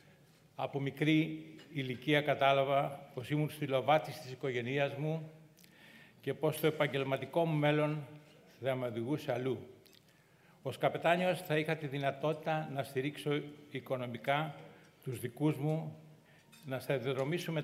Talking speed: 115 wpm